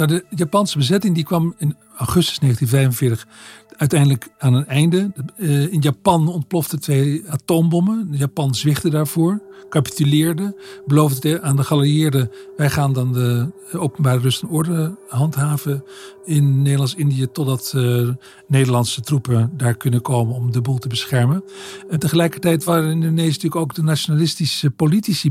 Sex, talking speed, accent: male, 140 wpm, Dutch